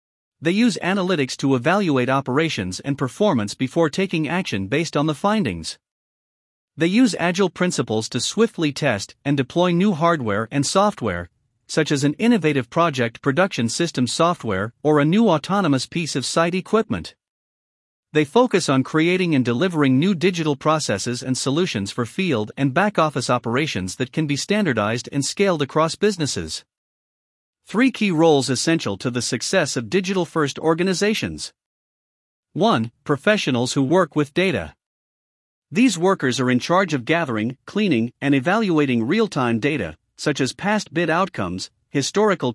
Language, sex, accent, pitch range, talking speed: English, male, American, 130-180 Hz, 145 wpm